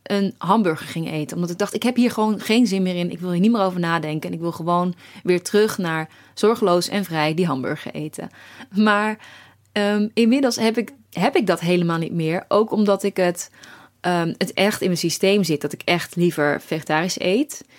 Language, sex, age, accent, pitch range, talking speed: Dutch, female, 20-39, Dutch, 170-210 Hz, 200 wpm